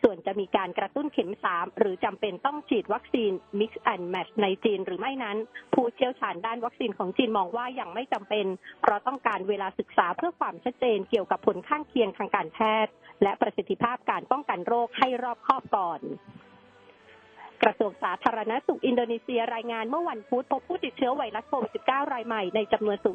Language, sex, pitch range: Thai, female, 205-250 Hz